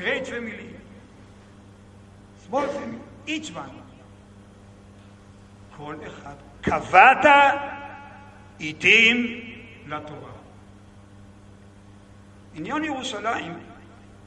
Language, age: English, 60-79